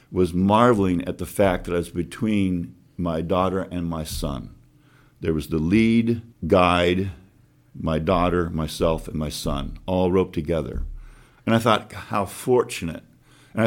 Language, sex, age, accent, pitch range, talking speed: English, male, 50-69, American, 85-105 Hz, 150 wpm